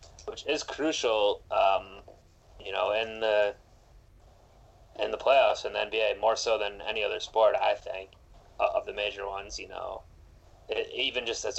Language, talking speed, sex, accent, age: English, 165 wpm, male, American, 20-39